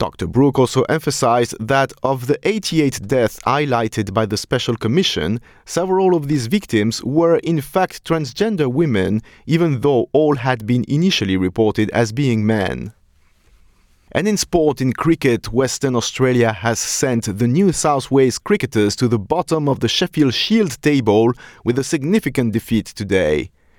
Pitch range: 105-145 Hz